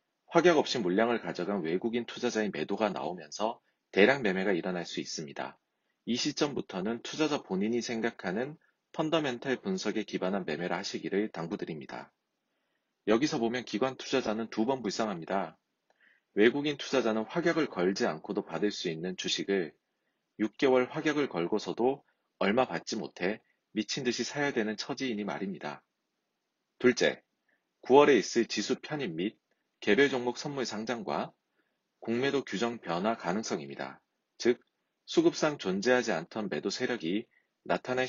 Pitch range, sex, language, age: 100-130 Hz, male, Korean, 40-59